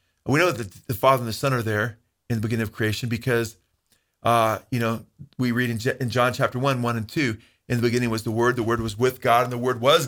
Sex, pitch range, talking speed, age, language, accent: male, 115-140 Hz, 270 wpm, 40-59, English, American